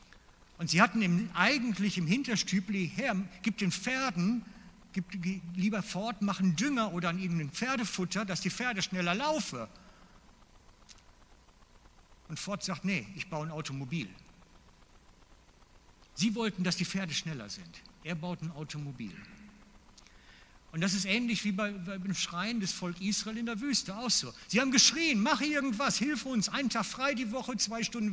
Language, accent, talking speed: German, German, 160 wpm